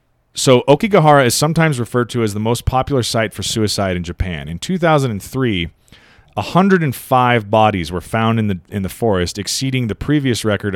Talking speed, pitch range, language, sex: 165 wpm, 100-125 Hz, English, male